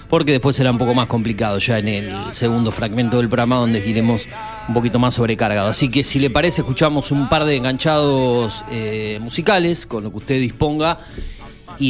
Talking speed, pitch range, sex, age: 190 wpm, 120-155 Hz, male, 30-49